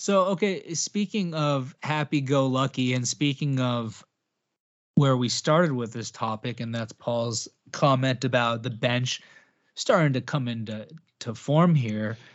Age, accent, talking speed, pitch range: 20-39, American, 145 wpm, 115-150 Hz